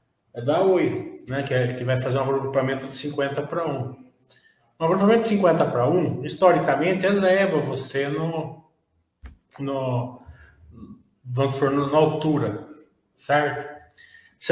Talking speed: 130 wpm